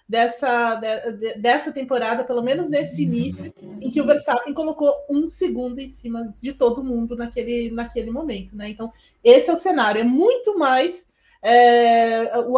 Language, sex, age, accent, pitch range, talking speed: Portuguese, female, 20-39, Brazilian, 240-315 Hz, 155 wpm